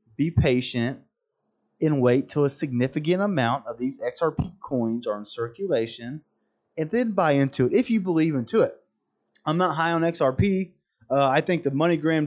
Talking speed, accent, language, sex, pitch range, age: 170 wpm, American, English, male, 135-165 Hz, 30-49